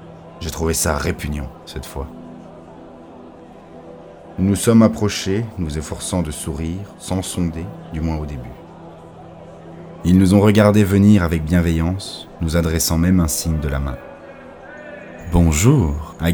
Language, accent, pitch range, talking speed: French, French, 80-100 Hz, 135 wpm